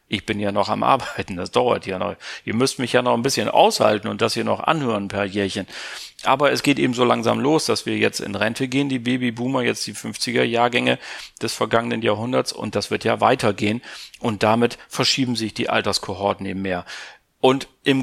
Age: 40-59